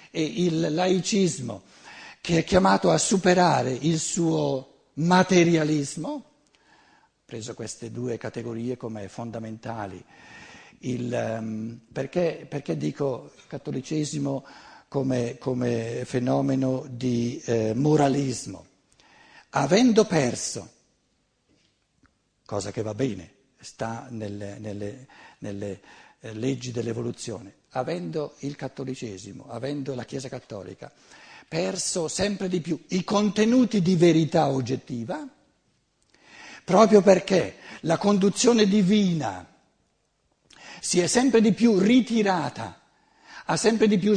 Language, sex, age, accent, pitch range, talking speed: Italian, male, 60-79, native, 120-190 Hz, 100 wpm